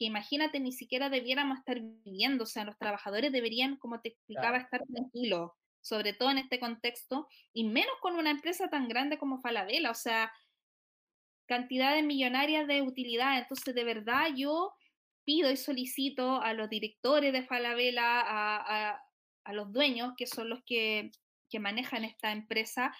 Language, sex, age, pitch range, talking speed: Spanish, female, 20-39, 230-280 Hz, 165 wpm